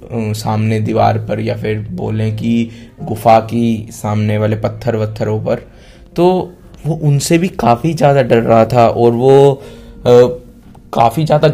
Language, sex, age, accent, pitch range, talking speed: Hindi, male, 20-39, native, 110-125 Hz, 140 wpm